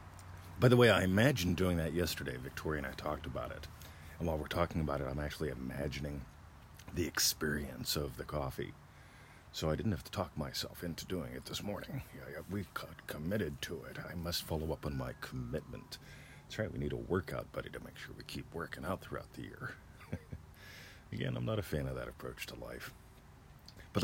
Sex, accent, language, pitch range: male, American, English, 75-100 Hz